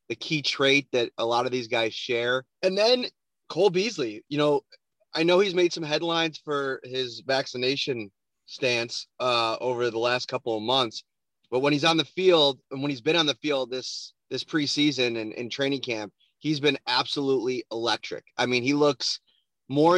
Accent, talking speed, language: American, 185 wpm, English